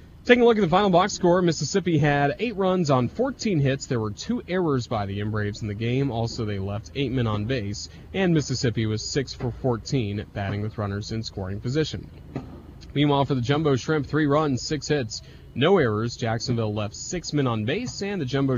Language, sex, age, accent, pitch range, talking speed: English, male, 30-49, American, 110-145 Hz, 205 wpm